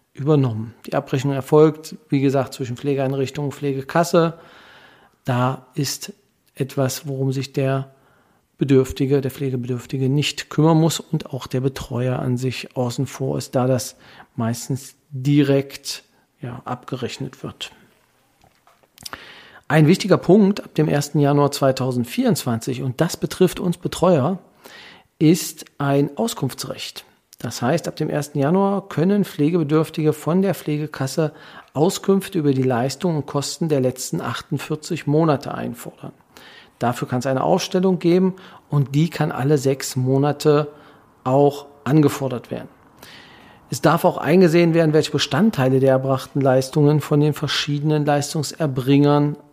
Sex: male